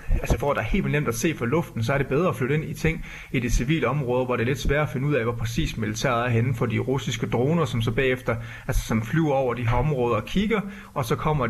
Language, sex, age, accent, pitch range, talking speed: Danish, male, 30-49, native, 115-150 Hz, 295 wpm